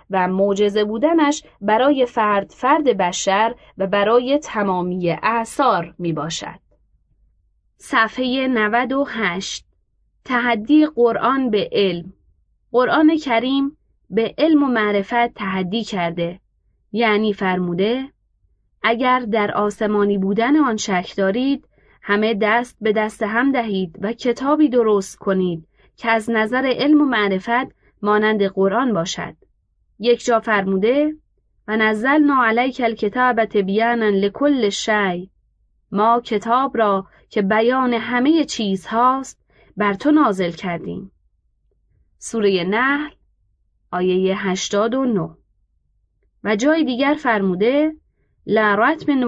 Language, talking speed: Persian, 105 wpm